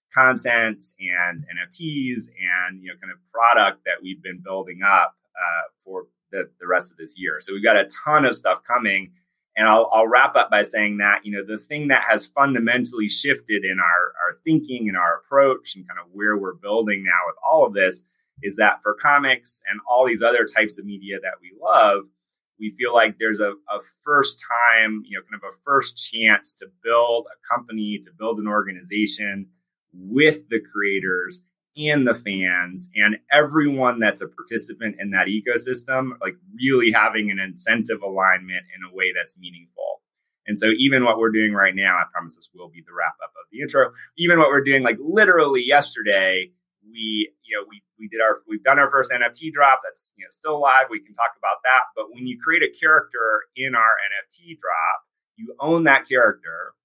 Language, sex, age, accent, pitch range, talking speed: English, male, 30-49, American, 95-135 Hz, 200 wpm